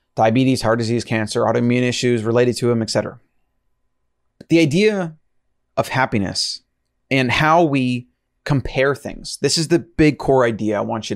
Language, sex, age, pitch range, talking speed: English, male, 30-49, 115-145 Hz, 150 wpm